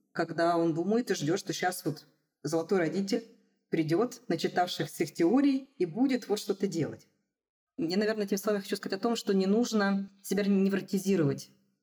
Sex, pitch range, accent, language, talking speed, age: female, 160-200 Hz, native, Russian, 160 wpm, 20-39